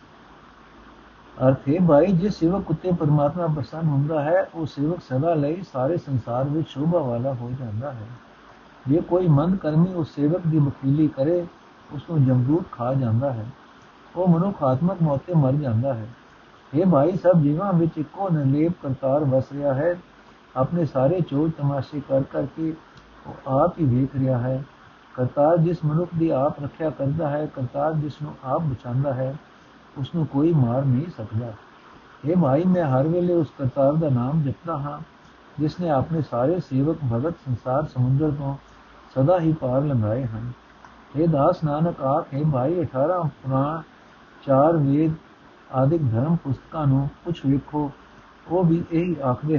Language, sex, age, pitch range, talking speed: Punjabi, male, 60-79, 130-165 Hz, 160 wpm